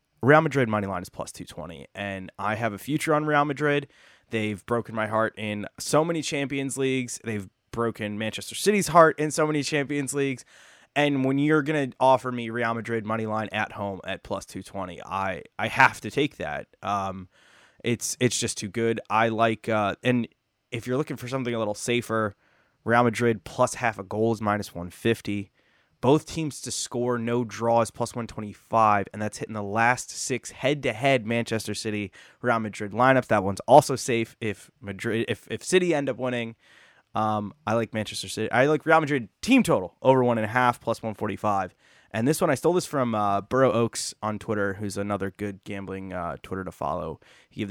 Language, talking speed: English, 195 wpm